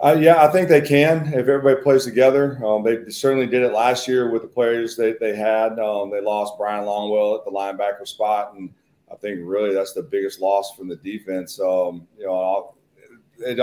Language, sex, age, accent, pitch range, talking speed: English, male, 40-59, American, 95-115 Hz, 210 wpm